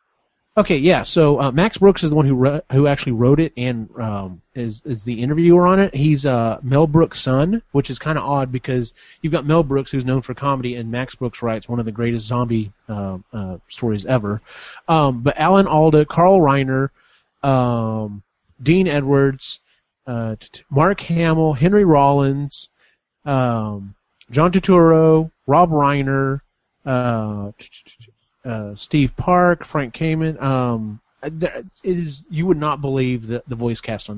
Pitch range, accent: 120-160 Hz, American